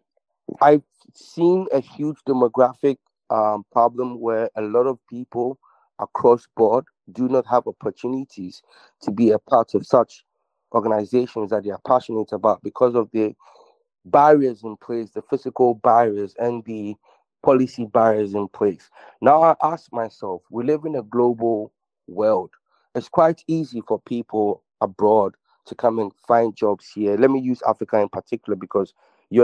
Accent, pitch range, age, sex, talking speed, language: Jamaican, 110-135 Hz, 30-49, male, 155 wpm, English